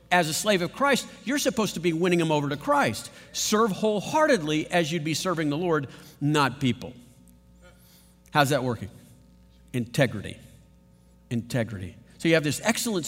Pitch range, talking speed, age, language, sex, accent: 125-170 Hz, 155 wpm, 50-69, English, male, American